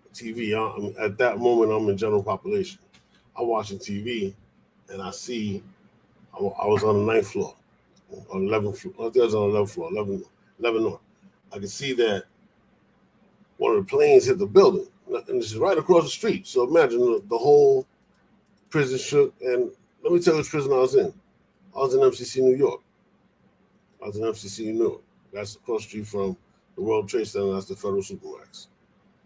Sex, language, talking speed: male, English, 200 wpm